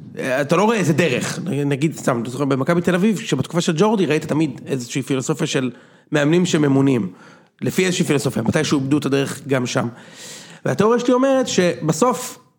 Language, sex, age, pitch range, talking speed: Hebrew, male, 40-59, 140-180 Hz, 165 wpm